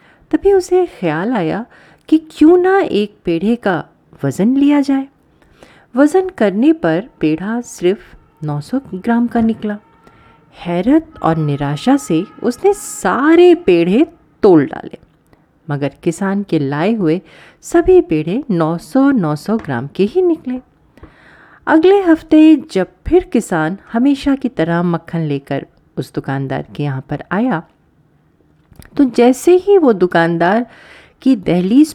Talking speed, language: 125 wpm, Hindi